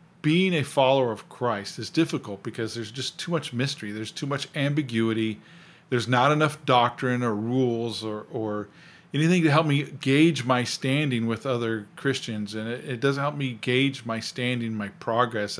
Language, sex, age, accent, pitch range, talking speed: English, male, 40-59, American, 115-165 Hz, 175 wpm